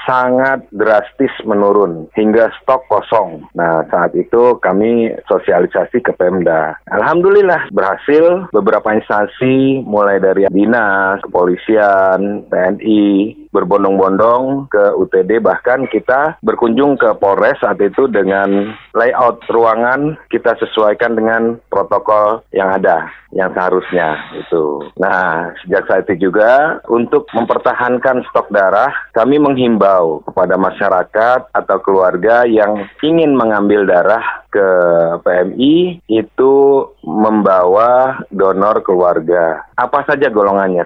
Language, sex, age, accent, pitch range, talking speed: Indonesian, male, 30-49, native, 100-130 Hz, 105 wpm